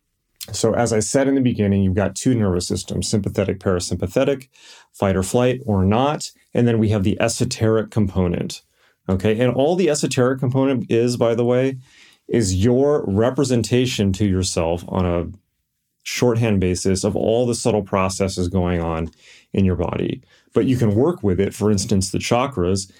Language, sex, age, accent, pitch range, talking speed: English, male, 30-49, American, 95-120 Hz, 170 wpm